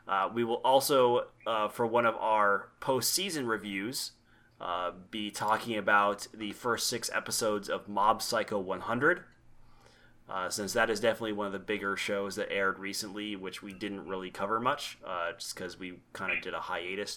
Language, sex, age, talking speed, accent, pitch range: English, male, 30-49, 180 wpm, American, 100-120 Hz